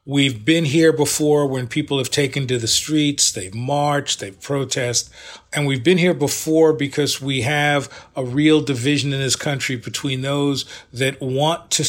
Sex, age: male, 40-59